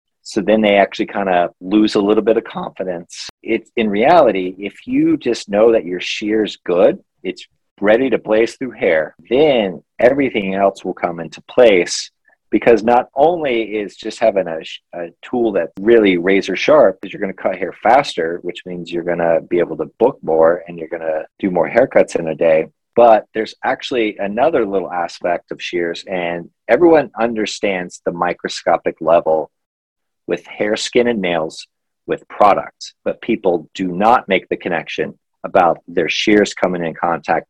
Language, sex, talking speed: English, male, 175 wpm